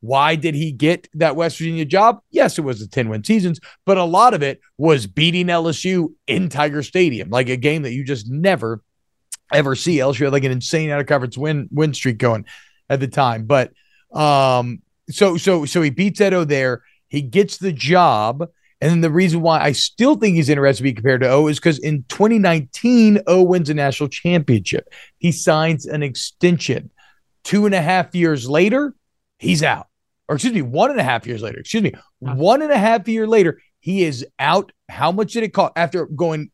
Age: 40-59